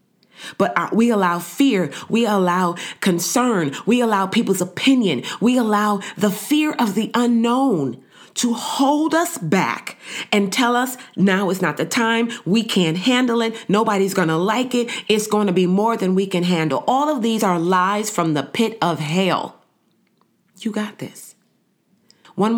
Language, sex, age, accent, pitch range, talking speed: English, female, 30-49, American, 175-220 Hz, 165 wpm